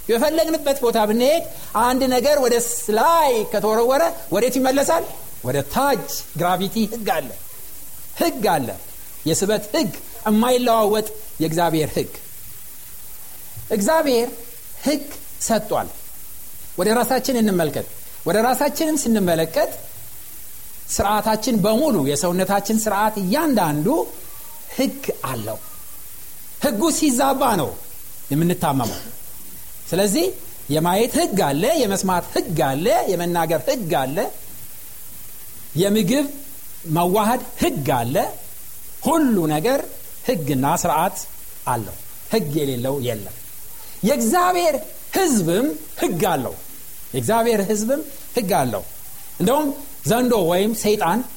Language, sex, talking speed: Amharic, male, 65 wpm